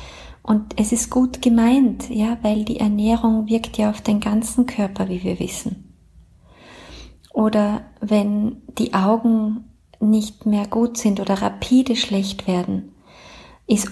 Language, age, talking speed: German, 30-49, 135 wpm